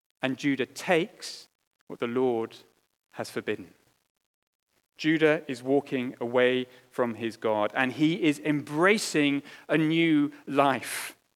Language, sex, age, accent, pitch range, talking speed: English, male, 30-49, British, 130-195 Hz, 115 wpm